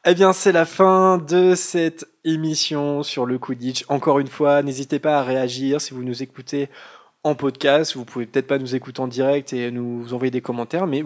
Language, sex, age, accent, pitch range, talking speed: French, male, 20-39, French, 130-165 Hz, 205 wpm